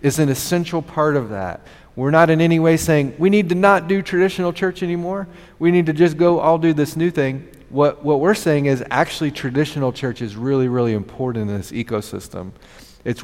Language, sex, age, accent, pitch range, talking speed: English, male, 40-59, American, 110-140 Hz, 210 wpm